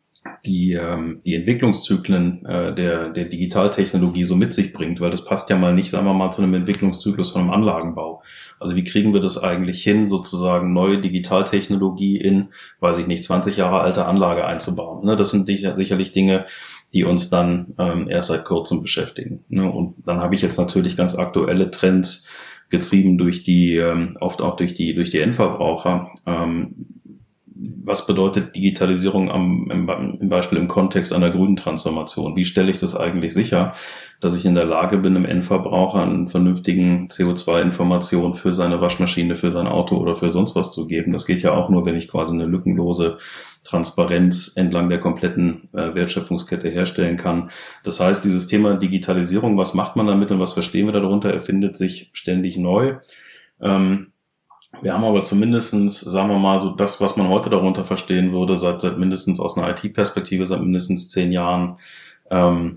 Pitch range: 90-95 Hz